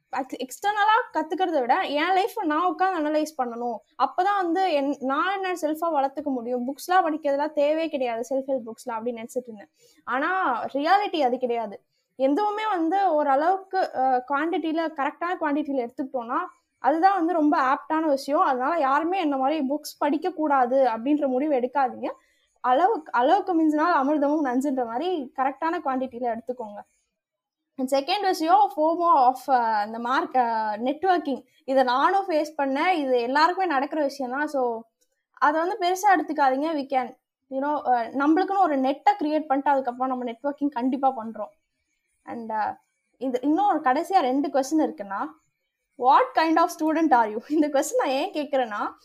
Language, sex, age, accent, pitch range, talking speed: English, female, 20-39, Indian, 260-335 Hz, 105 wpm